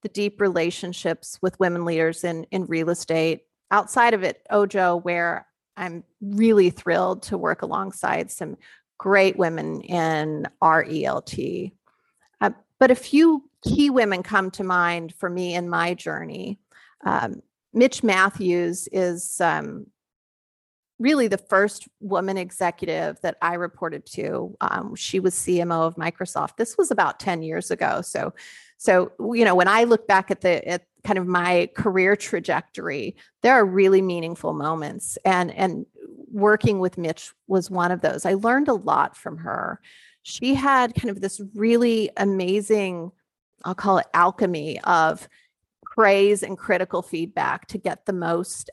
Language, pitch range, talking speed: English, 175-215 Hz, 150 wpm